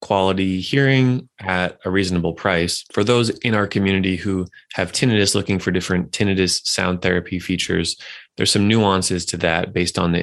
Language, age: English, 20-39